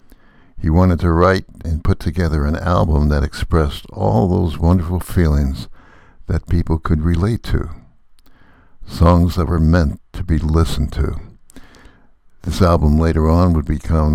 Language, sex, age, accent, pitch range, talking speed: English, male, 60-79, American, 75-95 Hz, 145 wpm